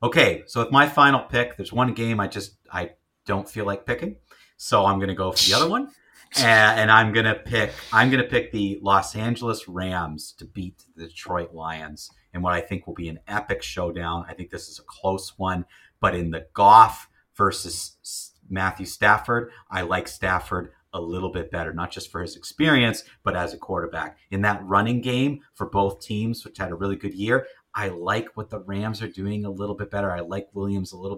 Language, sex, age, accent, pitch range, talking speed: English, male, 30-49, American, 95-120 Hz, 210 wpm